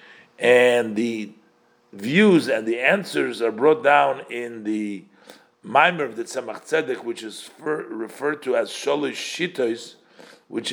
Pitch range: 120-165 Hz